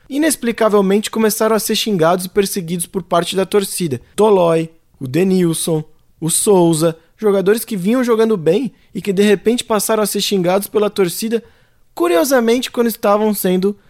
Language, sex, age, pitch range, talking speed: Portuguese, male, 20-39, 150-200 Hz, 150 wpm